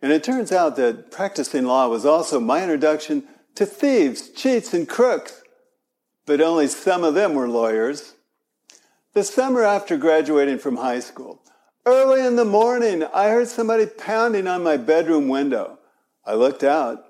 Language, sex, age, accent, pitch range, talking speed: English, male, 60-79, American, 150-245 Hz, 160 wpm